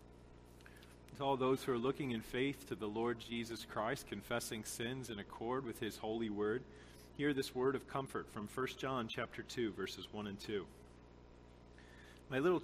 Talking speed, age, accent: 175 wpm, 40-59, American